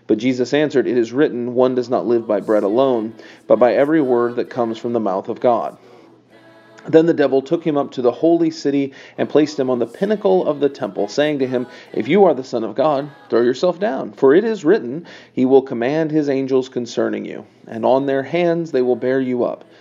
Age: 40-59